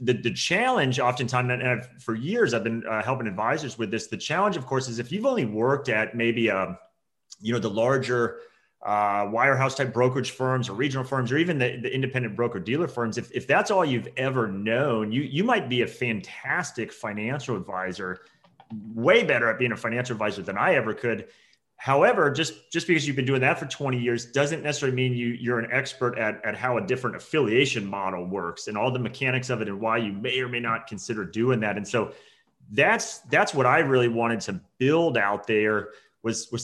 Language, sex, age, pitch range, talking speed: English, male, 30-49, 110-135 Hz, 210 wpm